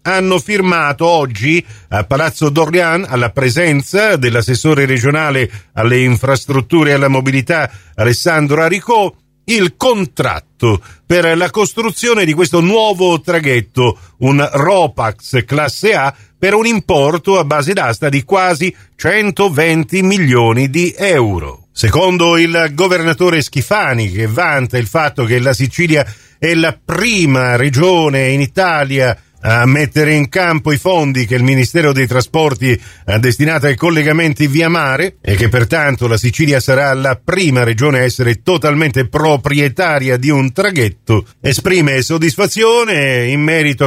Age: 50-69